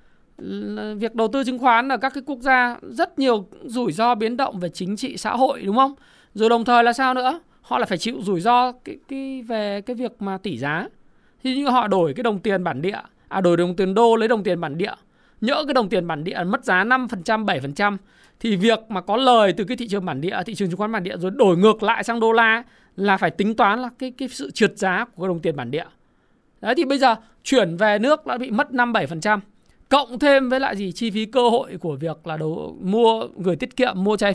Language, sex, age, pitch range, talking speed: Vietnamese, male, 20-39, 185-250 Hz, 245 wpm